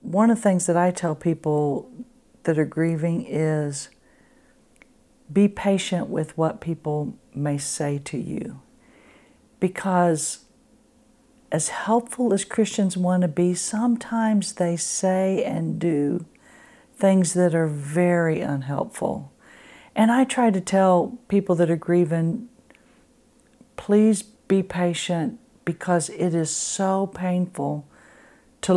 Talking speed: 120 wpm